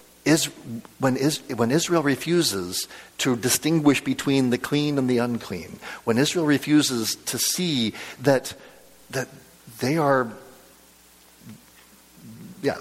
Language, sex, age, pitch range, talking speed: English, male, 50-69, 110-150 Hz, 110 wpm